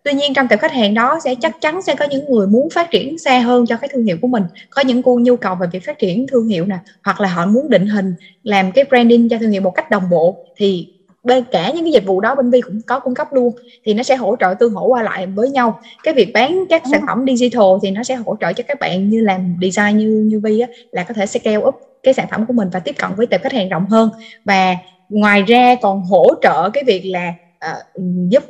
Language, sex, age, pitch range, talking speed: Vietnamese, female, 20-39, 195-260 Hz, 270 wpm